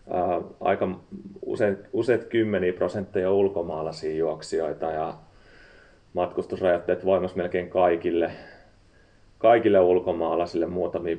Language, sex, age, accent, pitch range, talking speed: Finnish, male, 30-49, native, 85-100 Hz, 80 wpm